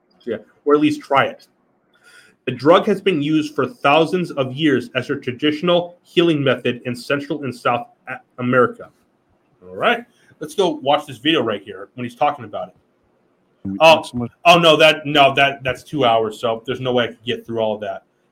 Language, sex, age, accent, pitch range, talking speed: English, male, 30-49, American, 125-160 Hz, 195 wpm